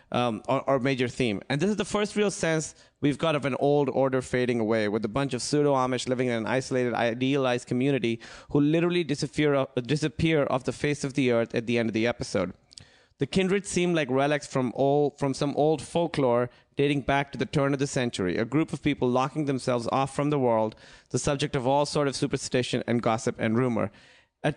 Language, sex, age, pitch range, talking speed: English, male, 30-49, 125-150 Hz, 205 wpm